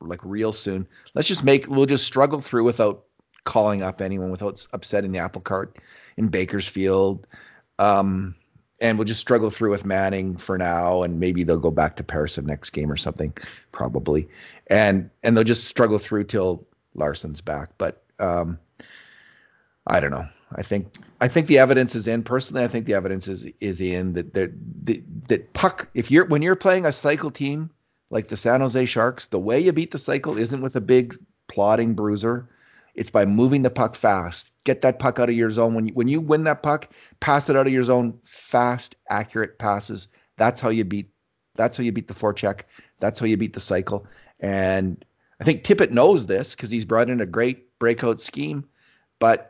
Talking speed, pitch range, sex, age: 200 wpm, 95-125 Hz, male, 40-59